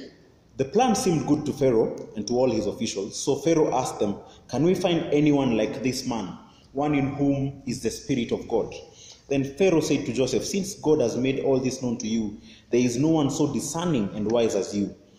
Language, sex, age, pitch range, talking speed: English, male, 30-49, 105-135 Hz, 215 wpm